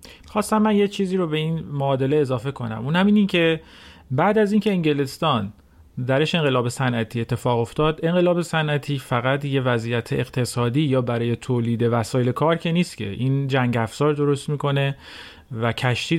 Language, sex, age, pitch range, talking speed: Persian, male, 40-59, 120-155 Hz, 165 wpm